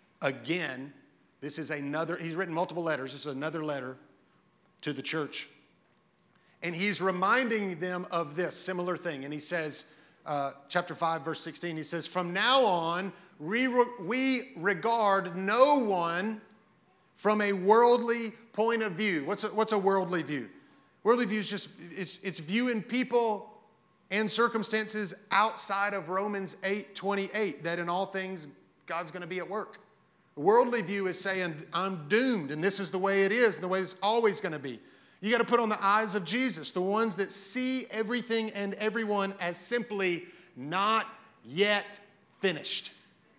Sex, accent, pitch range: male, American, 170-220 Hz